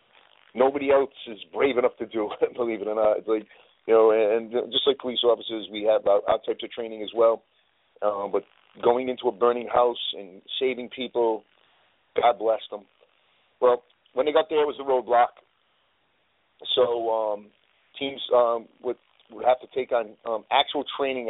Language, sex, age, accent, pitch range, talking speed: English, male, 40-59, American, 105-130 Hz, 180 wpm